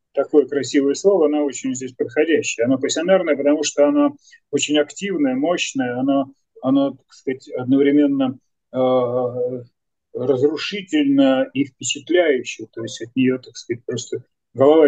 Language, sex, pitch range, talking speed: Russian, male, 130-185 Hz, 120 wpm